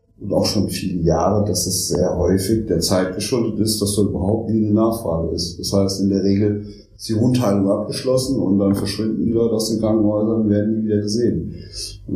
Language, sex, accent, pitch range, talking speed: German, male, German, 90-105 Hz, 205 wpm